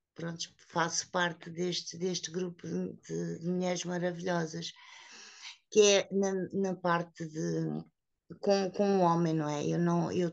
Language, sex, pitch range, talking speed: Portuguese, female, 170-200 Hz, 135 wpm